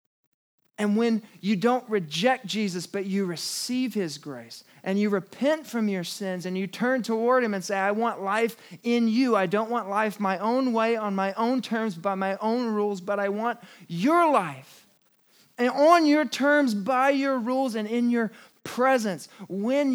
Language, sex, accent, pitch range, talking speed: English, male, American, 170-225 Hz, 185 wpm